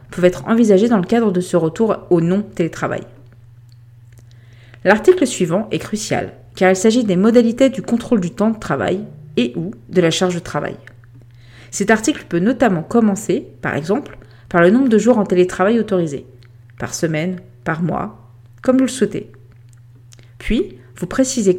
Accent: French